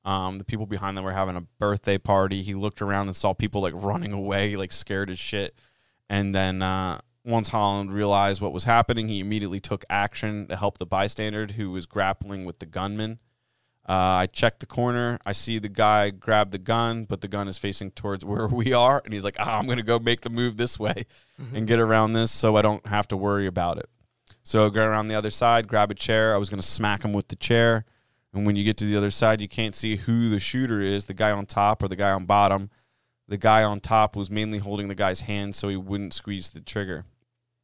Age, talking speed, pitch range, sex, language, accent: 20-39, 240 wpm, 100-115 Hz, male, English, American